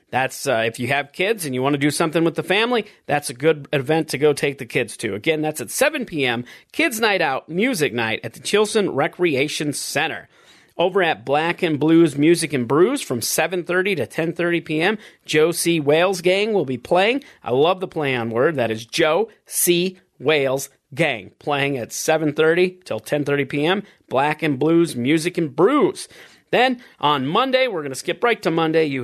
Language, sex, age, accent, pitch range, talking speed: English, male, 40-59, American, 145-190 Hz, 190 wpm